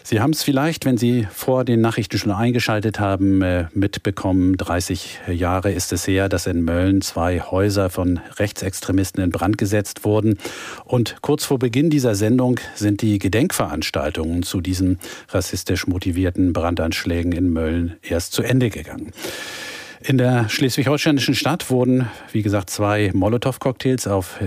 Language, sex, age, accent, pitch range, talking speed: German, male, 50-69, German, 90-115 Hz, 145 wpm